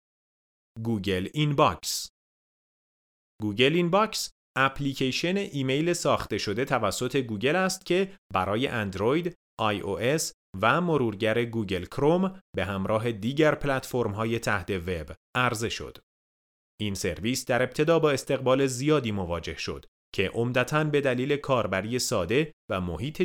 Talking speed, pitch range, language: 115 wpm, 95-140 Hz, Persian